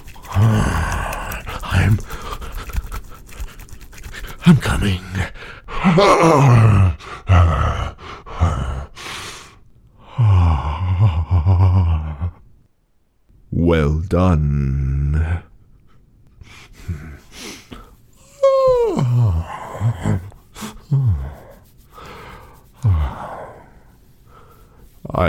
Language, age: English, 50-69